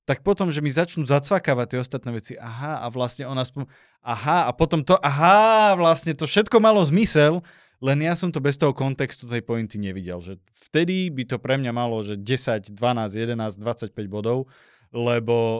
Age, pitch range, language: 20-39, 115-150 Hz, Slovak